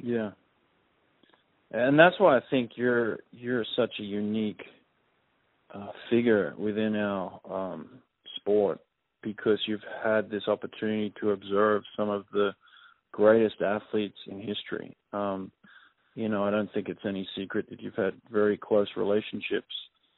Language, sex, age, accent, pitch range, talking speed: English, male, 40-59, American, 105-115 Hz, 135 wpm